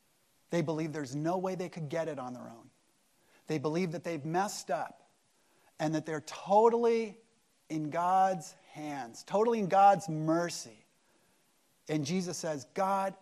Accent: American